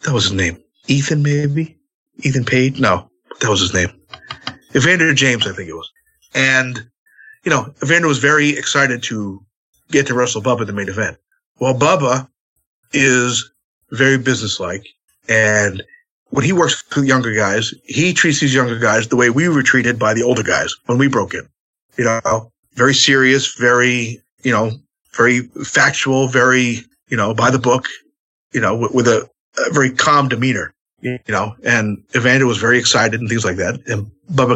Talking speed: 180 wpm